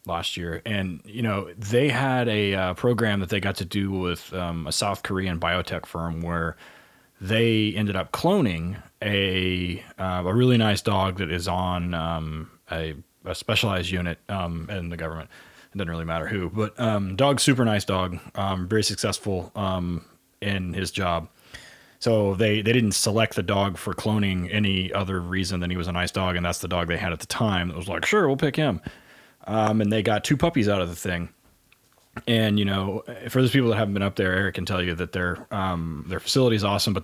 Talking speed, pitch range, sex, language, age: 210 wpm, 90-105 Hz, male, English, 30-49